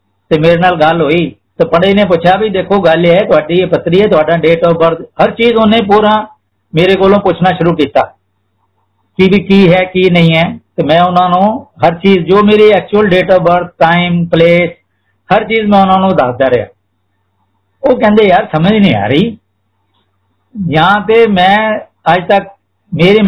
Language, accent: Hindi, native